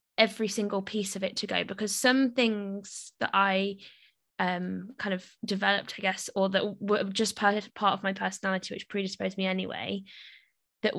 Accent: British